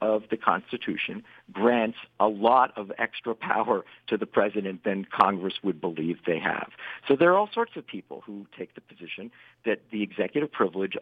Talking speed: 180 wpm